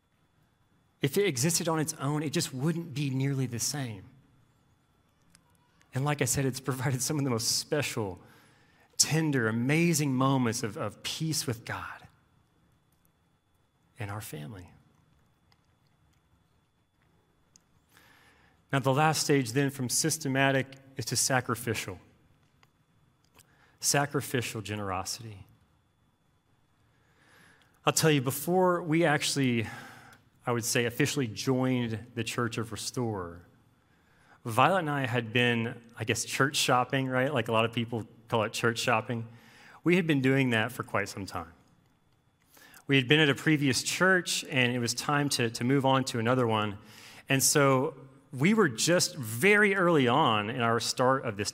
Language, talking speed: English, 140 wpm